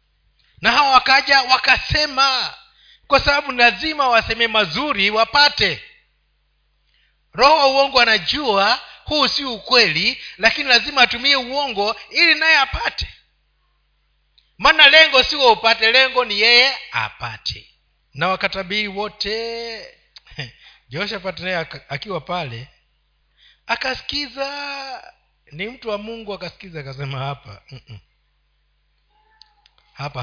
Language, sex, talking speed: Swahili, male, 95 wpm